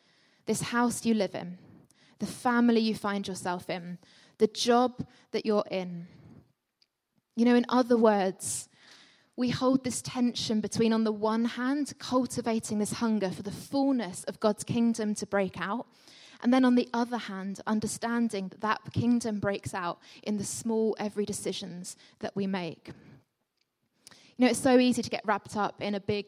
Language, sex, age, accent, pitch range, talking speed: English, female, 20-39, British, 195-235 Hz, 170 wpm